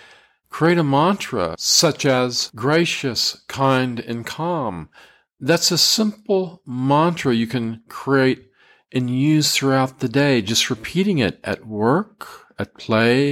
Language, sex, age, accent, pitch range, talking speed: English, male, 50-69, American, 115-145 Hz, 125 wpm